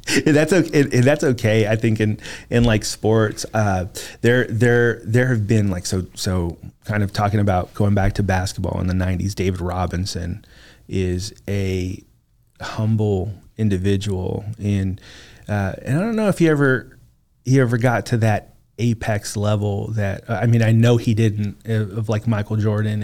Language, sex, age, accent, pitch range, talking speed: English, male, 30-49, American, 100-120 Hz, 170 wpm